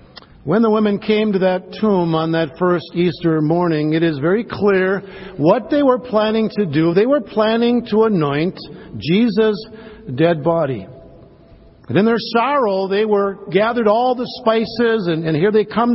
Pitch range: 170-220 Hz